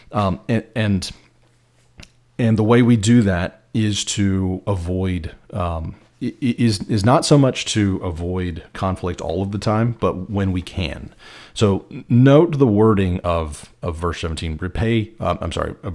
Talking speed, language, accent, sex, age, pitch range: 160 wpm, English, American, male, 40-59, 90-110 Hz